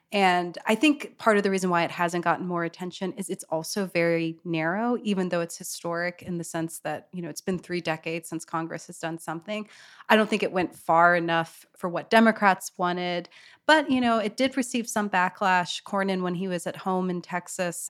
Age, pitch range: 30-49, 170-195 Hz